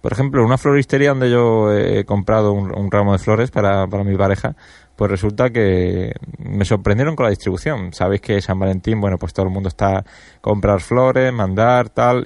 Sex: male